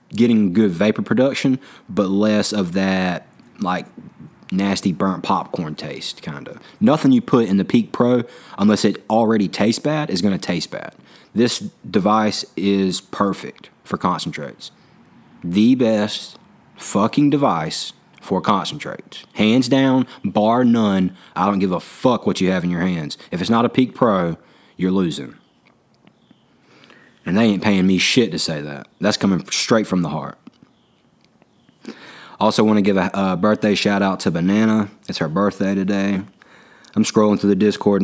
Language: English